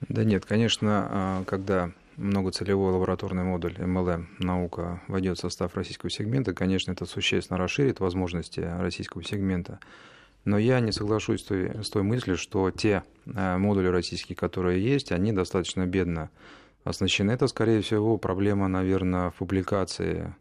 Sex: male